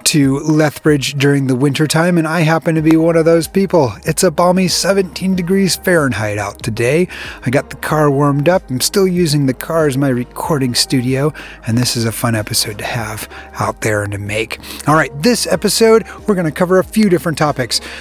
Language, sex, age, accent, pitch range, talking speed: English, male, 30-49, American, 135-180 Hz, 205 wpm